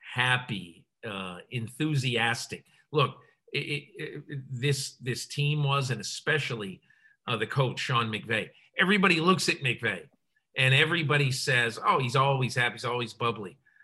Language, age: English, 50-69